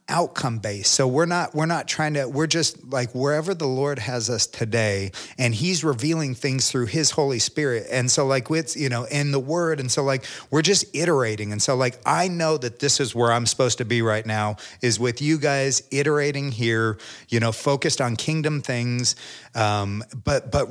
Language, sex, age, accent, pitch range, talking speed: English, male, 40-59, American, 115-140 Hz, 205 wpm